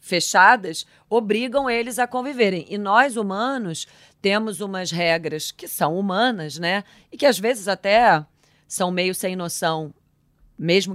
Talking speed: 135 wpm